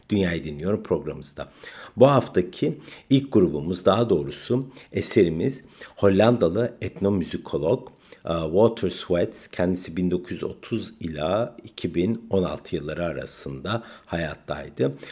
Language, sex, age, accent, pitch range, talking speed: Turkish, male, 50-69, native, 85-110 Hz, 85 wpm